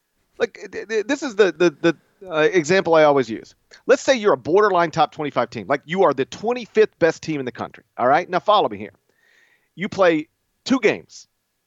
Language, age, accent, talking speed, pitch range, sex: English, 40-59, American, 200 wpm, 170-260 Hz, male